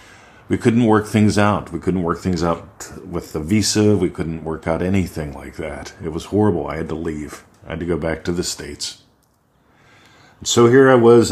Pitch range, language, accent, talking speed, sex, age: 85-110 Hz, English, American, 205 wpm, male, 50-69